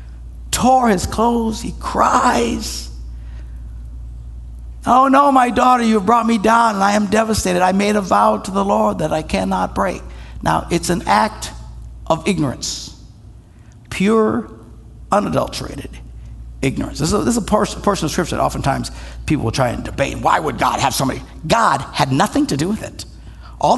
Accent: American